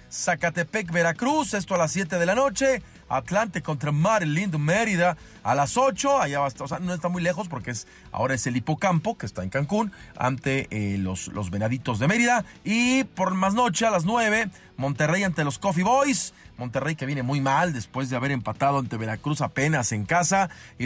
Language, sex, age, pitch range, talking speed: Spanish, male, 40-59, 125-195 Hz, 200 wpm